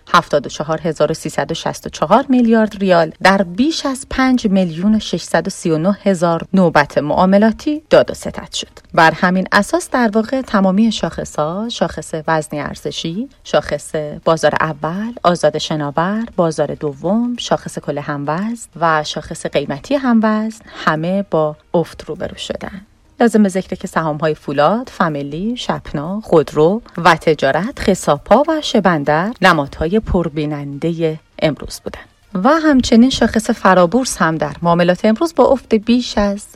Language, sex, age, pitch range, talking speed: Persian, female, 30-49, 155-215 Hz, 125 wpm